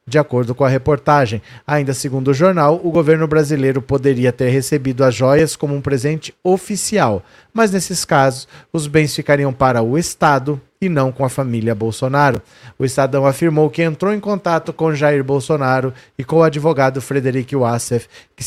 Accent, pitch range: Brazilian, 135-180 Hz